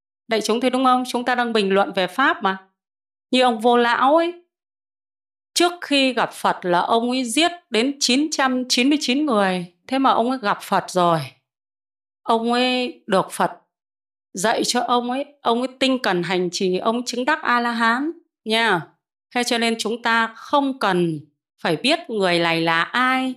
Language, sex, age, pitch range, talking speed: Vietnamese, female, 20-39, 180-250 Hz, 175 wpm